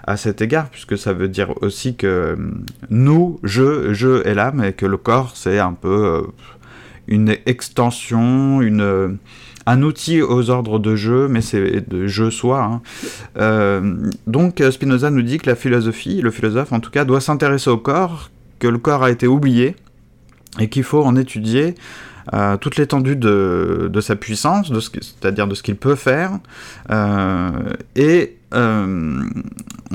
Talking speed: 160 wpm